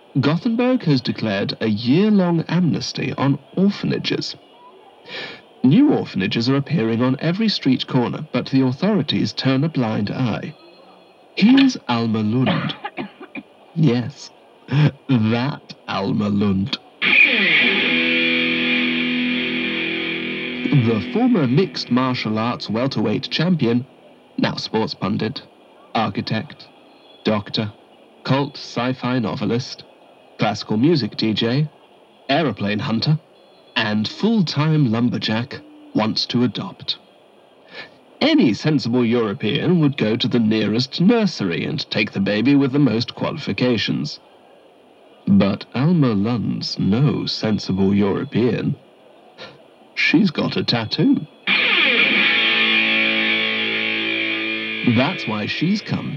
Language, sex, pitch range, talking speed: English, male, 110-155 Hz, 95 wpm